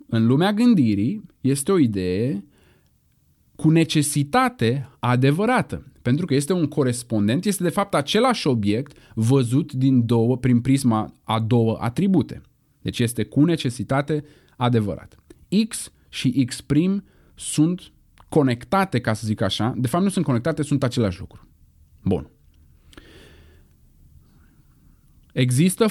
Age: 30-49